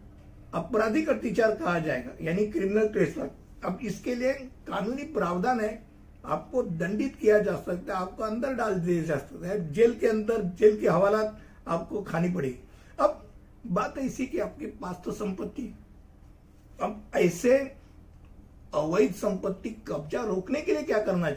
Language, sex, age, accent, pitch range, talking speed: Hindi, male, 60-79, native, 175-250 Hz, 95 wpm